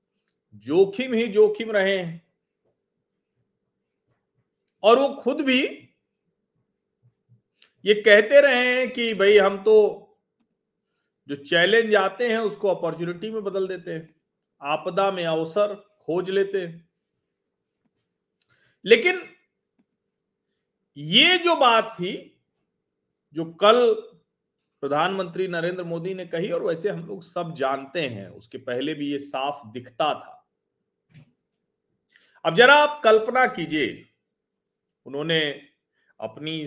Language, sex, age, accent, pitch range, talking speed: Hindi, male, 40-59, native, 155-215 Hz, 105 wpm